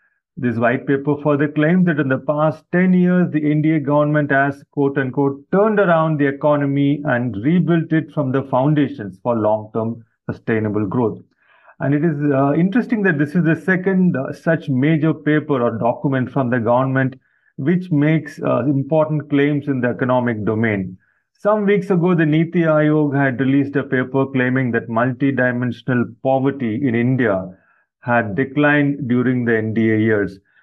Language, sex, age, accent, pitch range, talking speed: English, male, 30-49, Indian, 130-155 Hz, 160 wpm